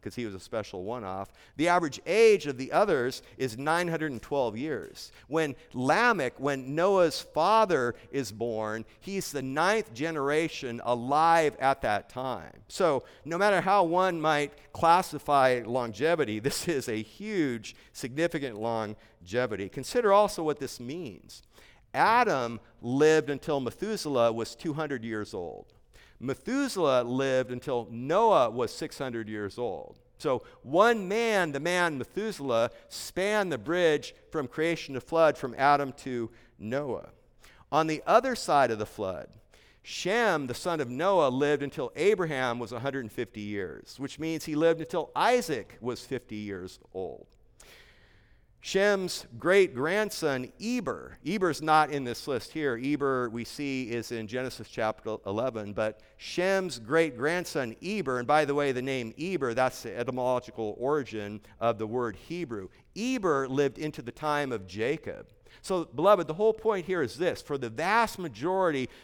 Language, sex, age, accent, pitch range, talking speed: English, male, 50-69, American, 120-170 Hz, 145 wpm